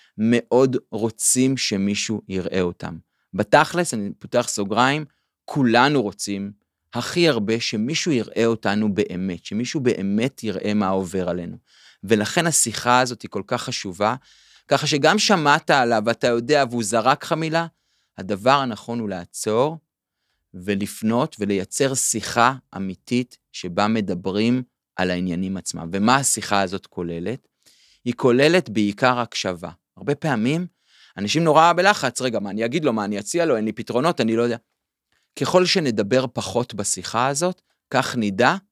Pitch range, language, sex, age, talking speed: 100-135 Hz, Hebrew, male, 30-49, 135 wpm